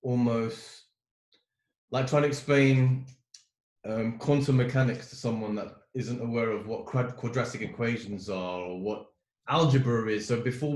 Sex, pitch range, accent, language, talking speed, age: male, 105-130 Hz, British, English, 140 wpm, 20-39